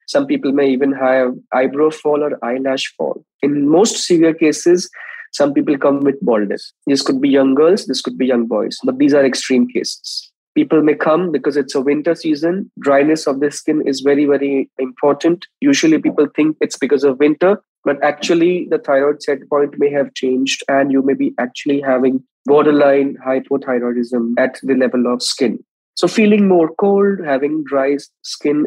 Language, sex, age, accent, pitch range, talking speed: English, male, 20-39, Indian, 135-160 Hz, 180 wpm